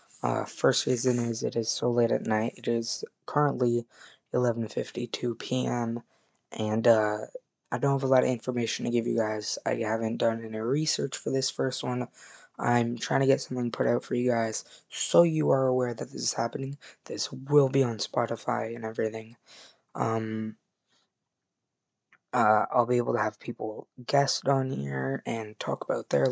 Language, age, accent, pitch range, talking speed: English, 20-39, American, 115-135 Hz, 175 wpm